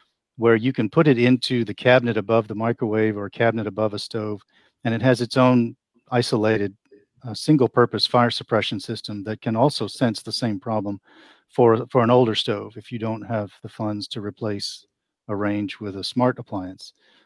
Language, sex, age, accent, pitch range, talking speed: English, male, 40-59, American, 105-120 Hz, 185 wpm